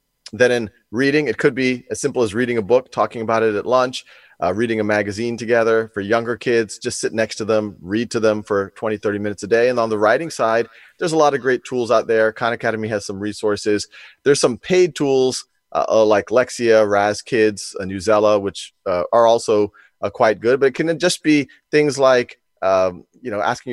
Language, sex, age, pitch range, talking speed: English, male, 30-49, 105-140 Hz, 215 wpm